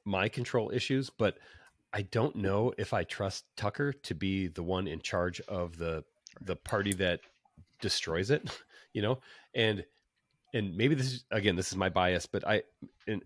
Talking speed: 175 wpm